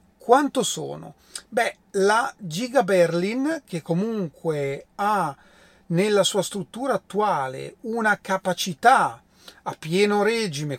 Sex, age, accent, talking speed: male, 40-59, native, 100 wpm